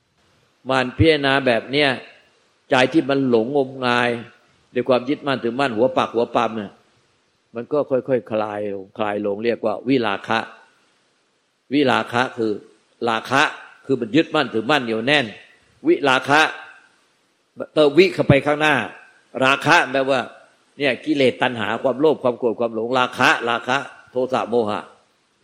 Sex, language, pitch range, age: male, Thai, 110-135 Hz, 60-79